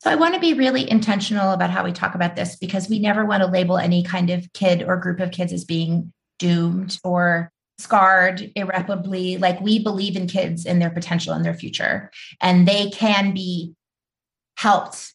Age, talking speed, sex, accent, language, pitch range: 30-49, 195 wpm, female, American, English, 170-210 Hz